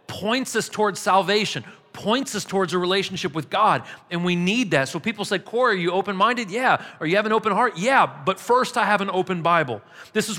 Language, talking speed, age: English, 225 wpm, 40-59